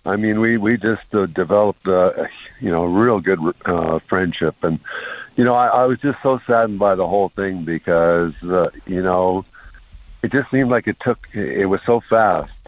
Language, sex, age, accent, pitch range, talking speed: English, male, 60-79, American, 90-110 Hz, 200 wpm